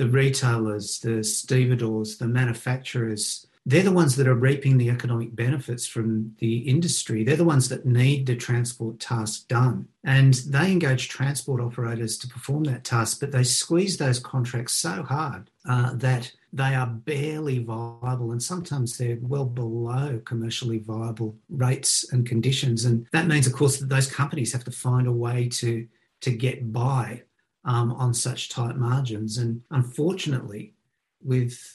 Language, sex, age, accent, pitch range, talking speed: English, male, 40-59, Australian, 115-135 Hz, 160 wpm